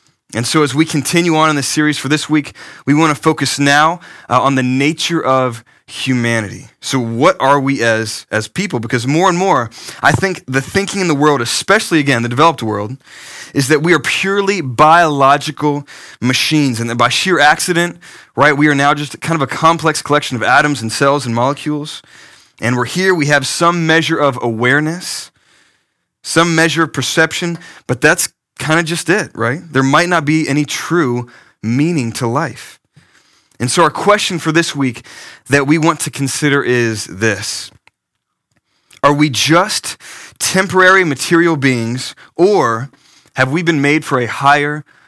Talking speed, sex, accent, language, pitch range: 175 wpm, male, American, English, 125-160 Hz